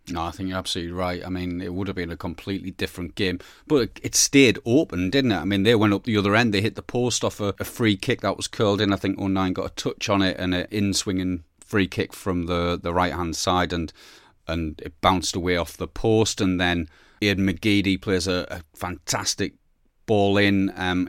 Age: 30-49